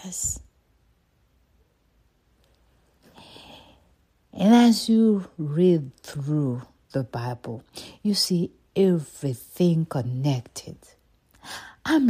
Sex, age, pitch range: female, 60-79, 130-180 Hz